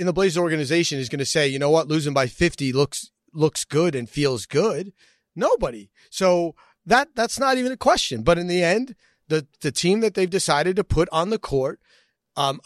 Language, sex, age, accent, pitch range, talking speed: English, male, 30-49, American, 145-195 Hz, 210 wpm